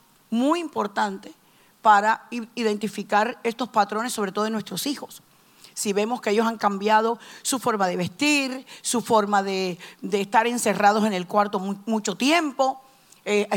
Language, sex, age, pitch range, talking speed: English, female, 40-59, 210-260 Hz, 150 wpm